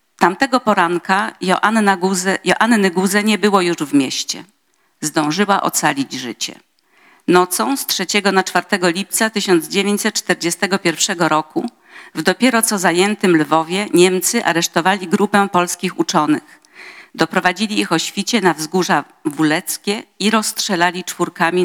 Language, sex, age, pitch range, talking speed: Polish, female, 50-69, 160-200 Hz, 115 wpm